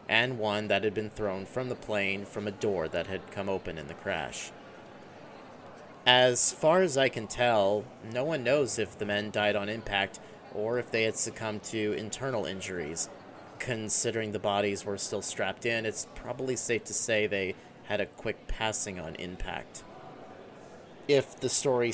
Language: English